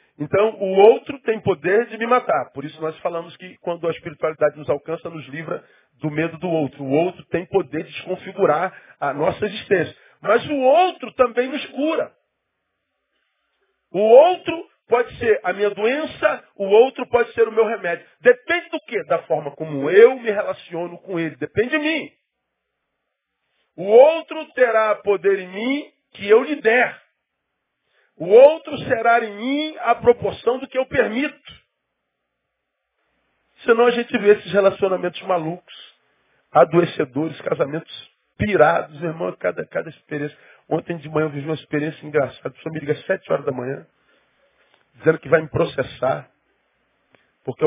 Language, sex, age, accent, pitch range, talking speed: Portuguese, male, 40-59, Brazilian, 155-240 Hz, 155 wpm